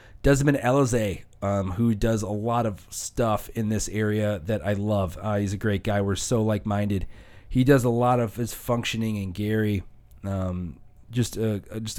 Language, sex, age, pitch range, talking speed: English, male, 30-49, 105-125 Hz, 170 wpm